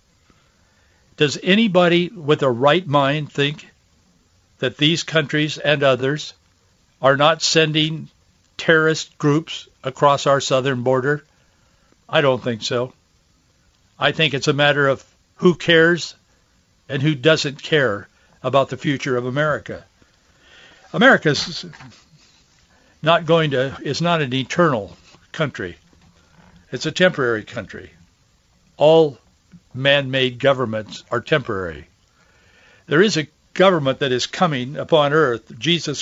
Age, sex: 60-79, male